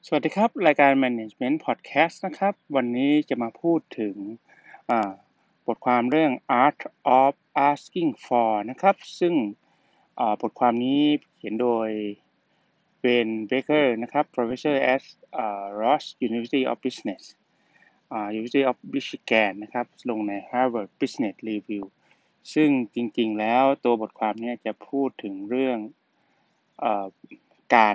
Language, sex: Thai, male